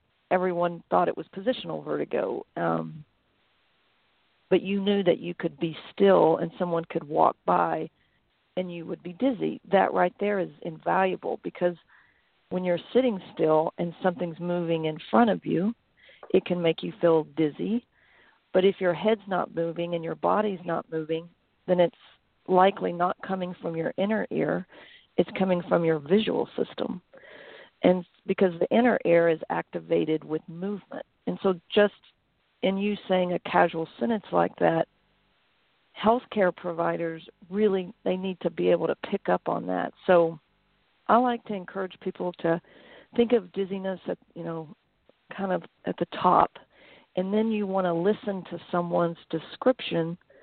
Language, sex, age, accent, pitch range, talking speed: English, female, 50-69, American, 170-200 Hz, 160 wpm